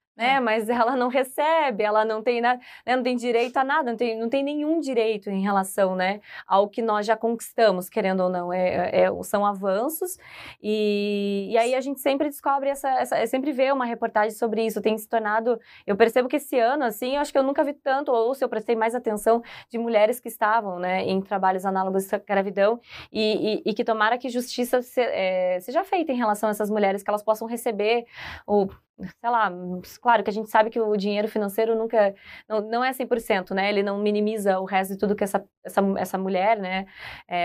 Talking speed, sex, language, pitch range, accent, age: 215 wpm, female, Portuguese, 195-245 Hz, Brazilian, 20-39